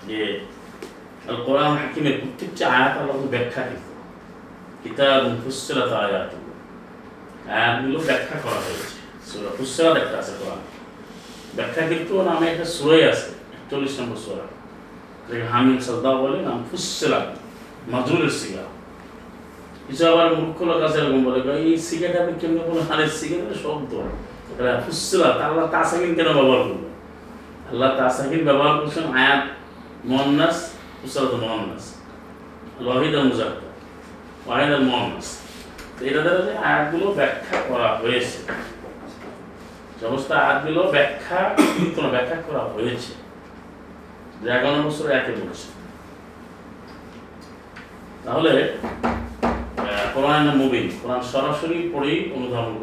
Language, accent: Bengali, native